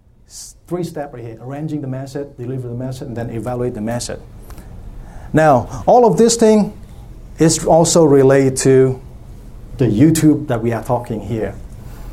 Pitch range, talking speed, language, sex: 120-155 Hz, 155 wpm, English, male